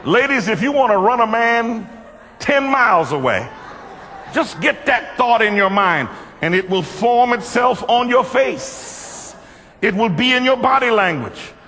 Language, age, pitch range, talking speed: English, 60-79, 140-235 Hz, 170 wpm